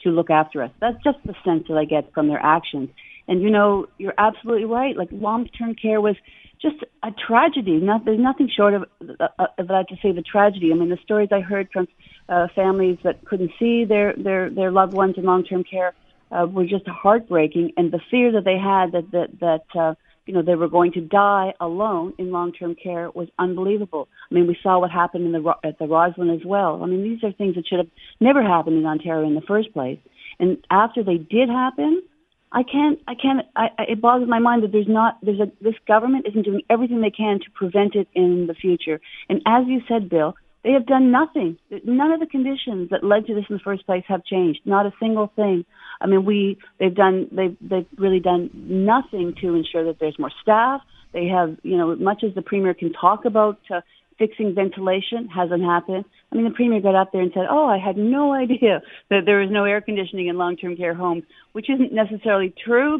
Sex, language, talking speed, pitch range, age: female, English, 220 wpm, 175-220 Hz, 40-59